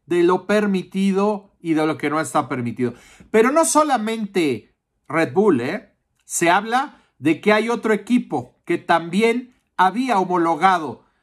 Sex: male